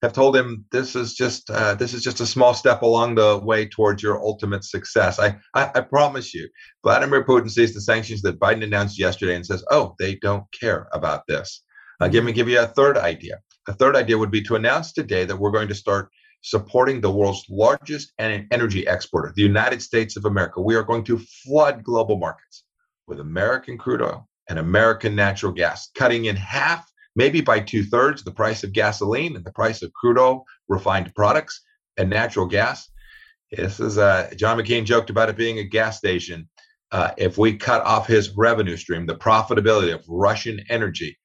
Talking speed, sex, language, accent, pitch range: 195 wpm, male, English, American, 105-125 Hz